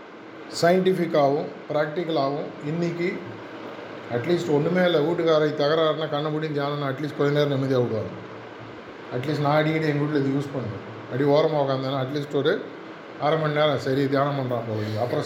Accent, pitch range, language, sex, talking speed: native, 140-175 Hz, Tamil, male, 135 wpm